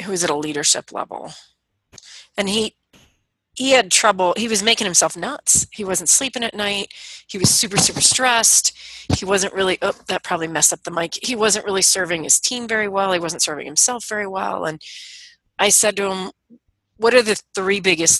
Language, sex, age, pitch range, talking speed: English, female, 30-49, 165-220 Hz, 200 wpm